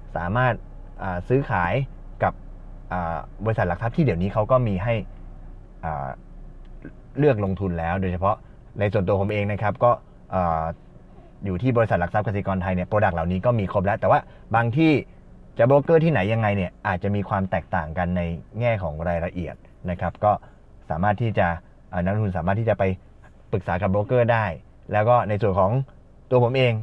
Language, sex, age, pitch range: Thai, male, 20-39, 90-115 Hz